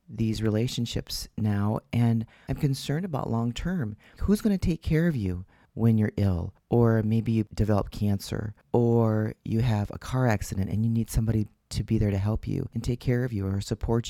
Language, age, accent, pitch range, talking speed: English, 40-59, American, 100-120 Hz, 195 wpm